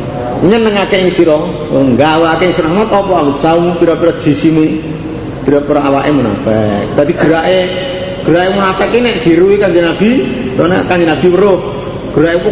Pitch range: 150-215 Hz